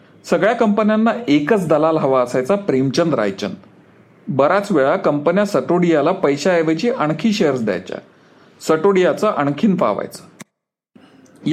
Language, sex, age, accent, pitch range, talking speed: Marathi, male, 40-59, native, 165-210 Hz, 100 wpm